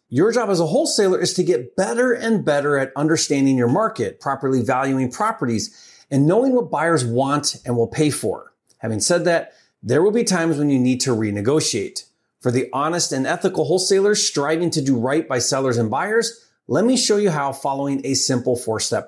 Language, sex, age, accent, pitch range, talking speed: English, male, 30-49, American, 135-200 Hz, 195 wpm